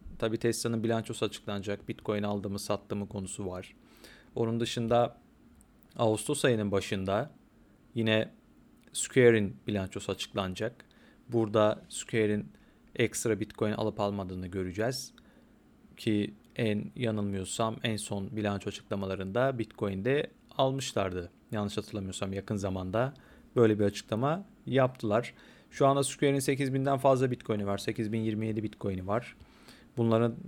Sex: male